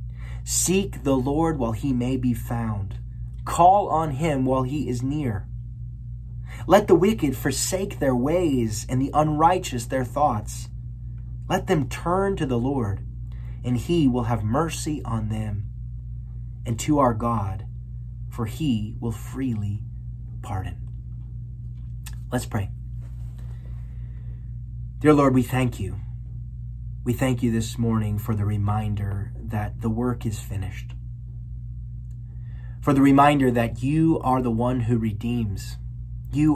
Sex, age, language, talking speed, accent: male, 30-49, English, 130 wpm, American